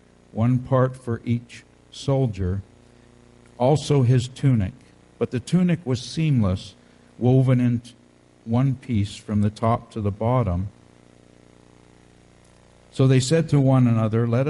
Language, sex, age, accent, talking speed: English, male, 60-79, American, 125 wpm